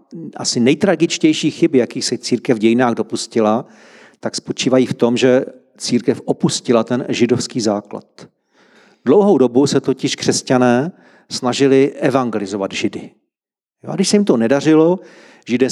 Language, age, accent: Czech, 40-59, native